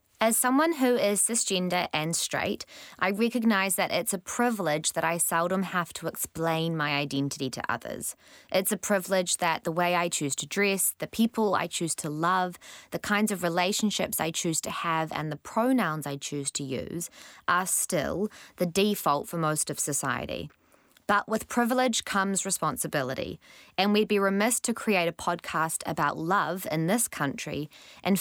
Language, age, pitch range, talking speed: English, 20-39, 155-205 Hz, 170 wpm